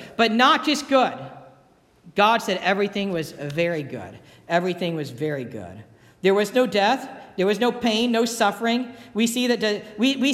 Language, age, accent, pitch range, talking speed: English, 50-69, American, 175-245 Hz, 175 wpm